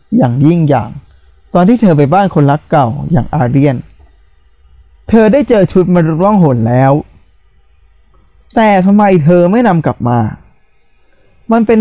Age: 20-39